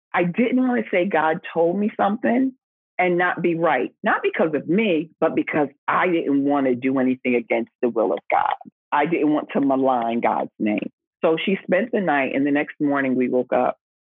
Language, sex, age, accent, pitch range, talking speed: English, female, 40-59, American, 140-180 Hz, 210 wpm